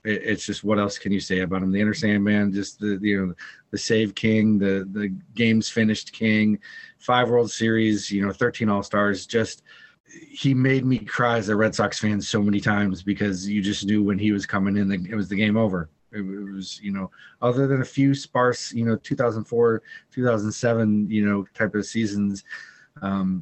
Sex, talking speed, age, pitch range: male, 195 wpm, 30-49, 100-115 Hz